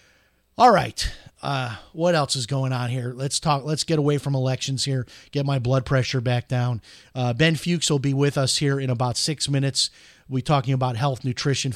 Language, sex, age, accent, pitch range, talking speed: English, male, 40-59, American, 135-175 Hz, 205 wpm